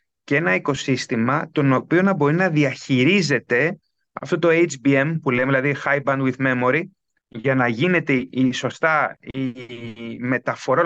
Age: 30-49